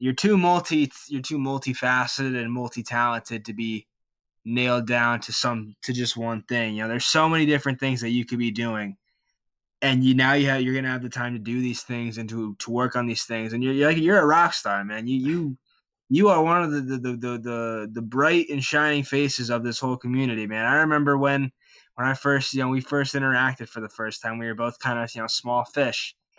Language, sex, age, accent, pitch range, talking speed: English, male, 20-39, American, 115-140 Hz, 240 wpm